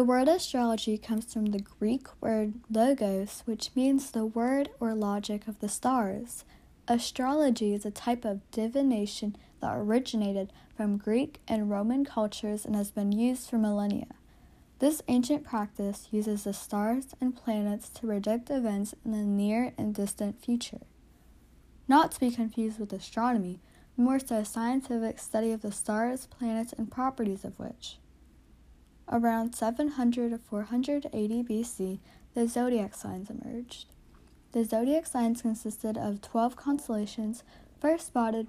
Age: 10-29